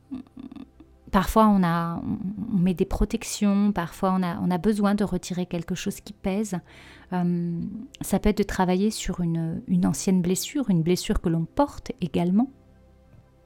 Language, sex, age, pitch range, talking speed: French, female, 30-49, 170-210 Hz, 150 wpm